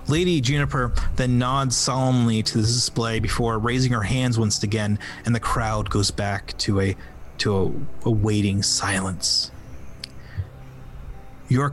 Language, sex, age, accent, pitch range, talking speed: English, male, 30-49, American, 100-130 Hz, 140 wpm